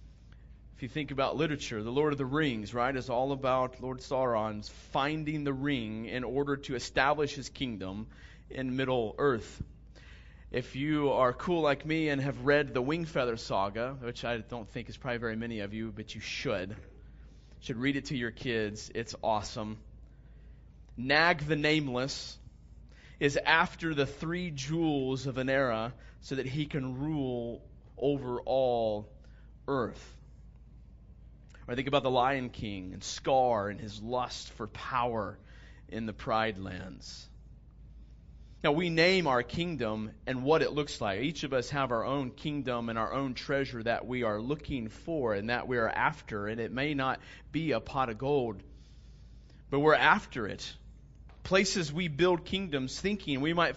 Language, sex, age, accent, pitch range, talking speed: English, male, 30-49, American, 110-145 Hz, 165 wpm